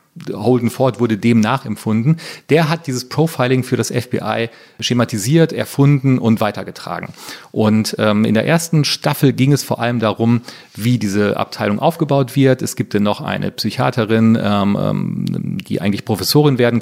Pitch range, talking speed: 110-140 Hz, 155 wpm